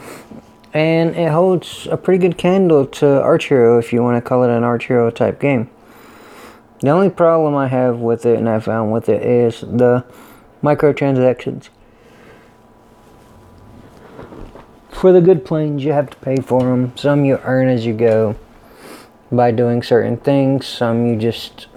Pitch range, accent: 115-145 Hz, American